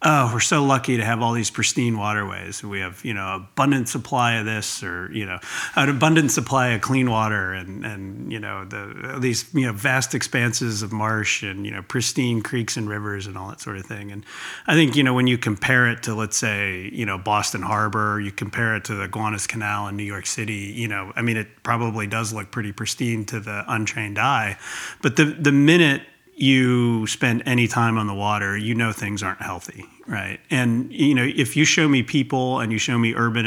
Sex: male